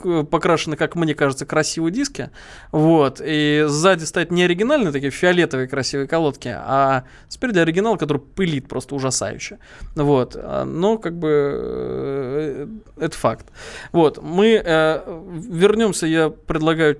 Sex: male